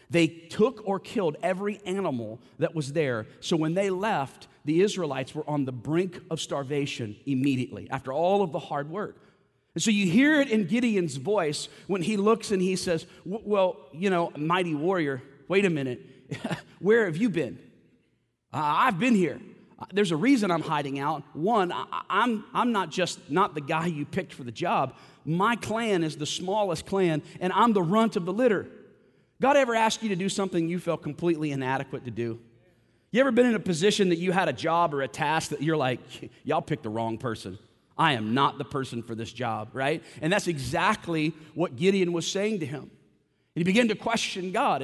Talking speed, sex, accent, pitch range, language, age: 200 wpm, male, American, 140-200 Hz, English, 40-59